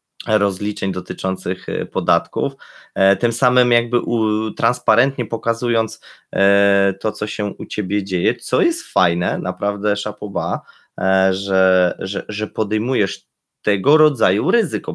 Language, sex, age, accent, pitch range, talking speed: Polish, male, 20-39, native, 105-140 Hz, 105 wpm